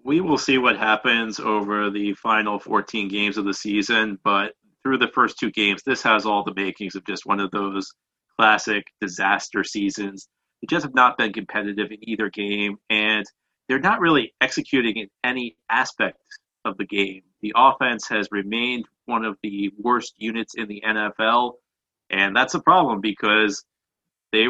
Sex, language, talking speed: male, English, 170 wpm